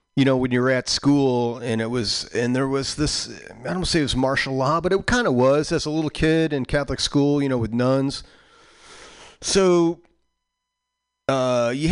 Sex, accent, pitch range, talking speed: male, American, 110-160 Hz, 210 wpm